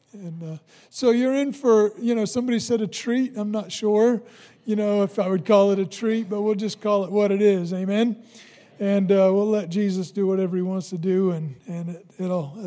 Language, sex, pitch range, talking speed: English, male, 180-215 Hz, 225 wpm